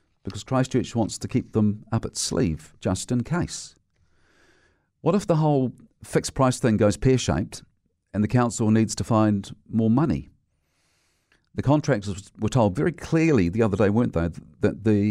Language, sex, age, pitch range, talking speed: English, male, 50-69, 95-120 Hz, 165 wpm